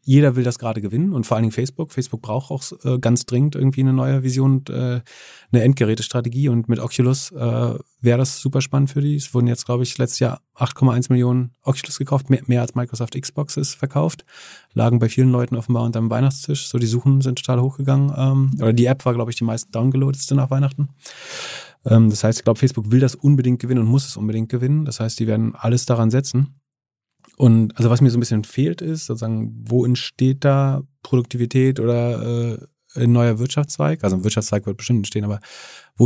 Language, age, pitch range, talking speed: German, 30-49, 115-135 Hz, 210 wpm